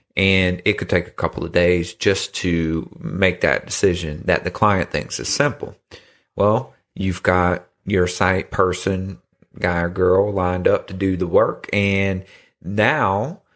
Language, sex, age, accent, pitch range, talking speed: English, male, 40-59, American, 90-105 Hz, 160 wpm